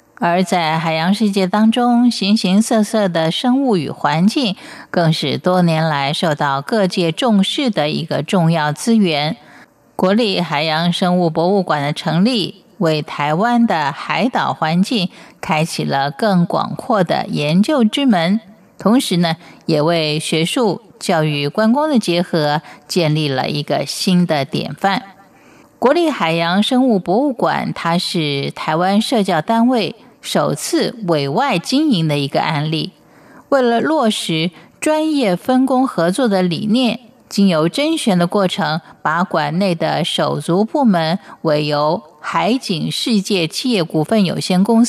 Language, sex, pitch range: Chinese, female, 160-225 Hz